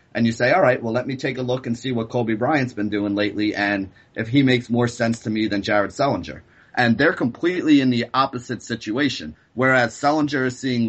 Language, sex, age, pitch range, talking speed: English, male, 30-49, 105-125 Hz, 225 wpm